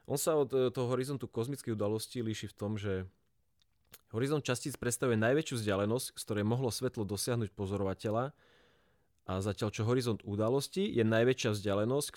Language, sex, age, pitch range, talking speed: Slovak, male, 30-49, 95-115 Hz, 150 wpm